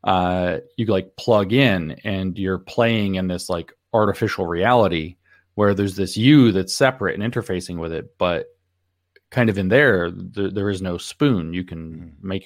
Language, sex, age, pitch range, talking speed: English, male, 30-49, 85-105 Hz, 170 wpm